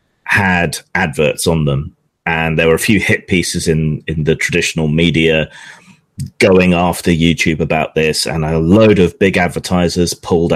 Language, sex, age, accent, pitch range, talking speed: English, male, 30-49, British, 80-95 Hz, 160 wpm